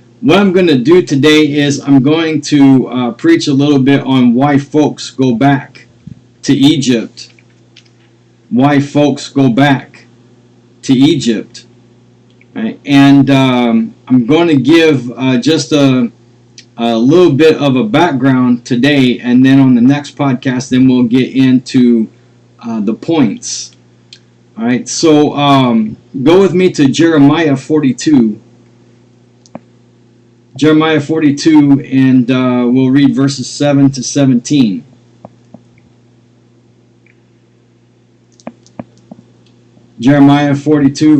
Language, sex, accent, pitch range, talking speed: English, male, American, 120-140 Hz, 115 wpm